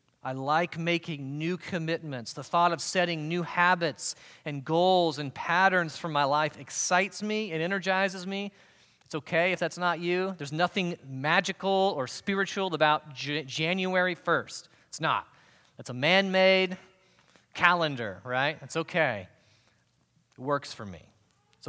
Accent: American